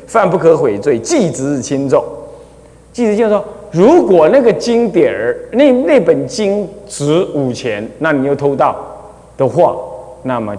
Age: 30-49